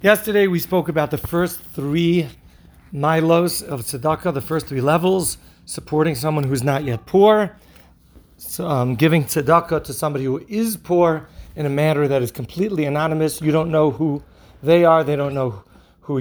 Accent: American